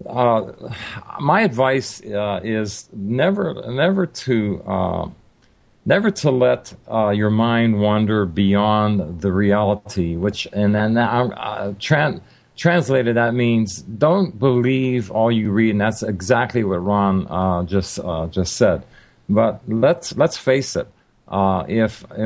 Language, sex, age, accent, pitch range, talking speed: English, male, 50-69, American, 100-120 Hz, 135 wpm